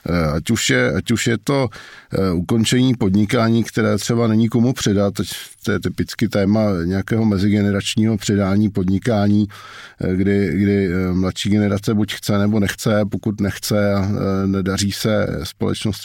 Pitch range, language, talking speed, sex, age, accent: 95-110 Hz, Czech, 130 wpm, male, 50-69, native